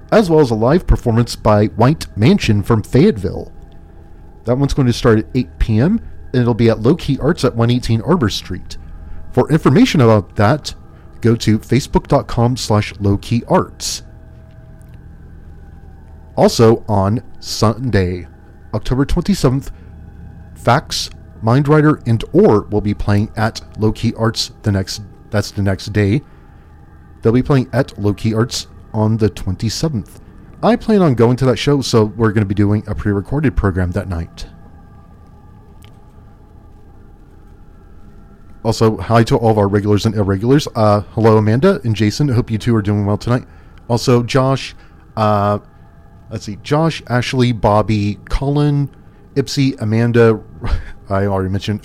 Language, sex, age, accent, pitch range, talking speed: English, male, 40-59, American, 95-120 Hz, 140 wpm